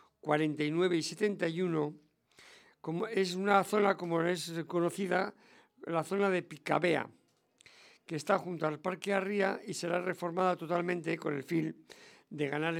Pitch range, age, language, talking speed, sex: 155-195 Hz, 60-79, English, 135 wpm, male